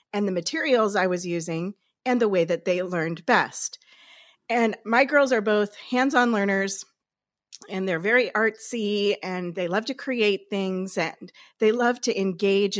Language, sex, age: English, female, 40-59